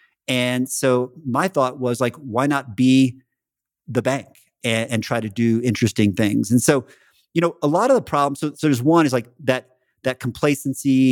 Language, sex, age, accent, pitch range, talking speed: English, male, 40-59, American, 120-140 Hz, 195 wpm